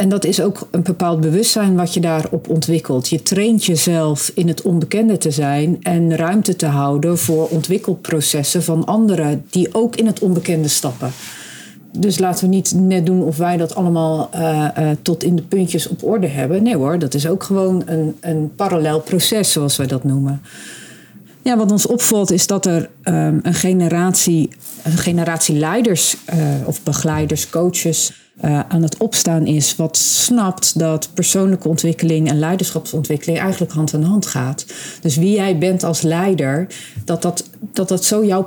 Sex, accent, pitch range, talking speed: female, Dutch, 155-190 Hz, 175 wpm